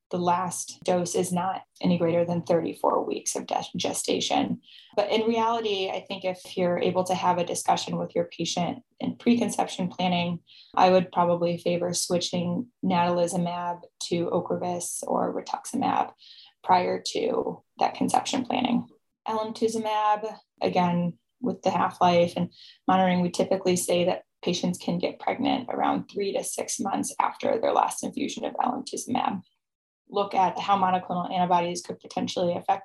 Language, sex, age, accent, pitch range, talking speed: English, female, 10-29, American, 175-215 Hz, 145 wpm